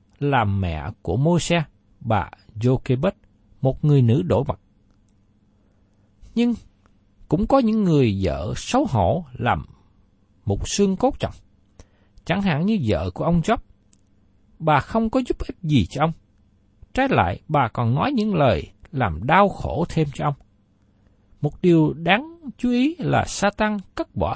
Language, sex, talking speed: Vietnamese, male, 150 wpm